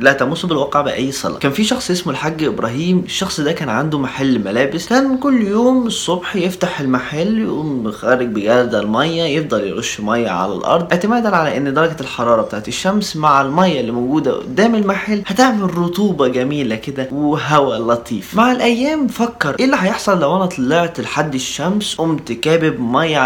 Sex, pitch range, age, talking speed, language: male, 145-195 Hz, 20-39, 170 wpm, Arabic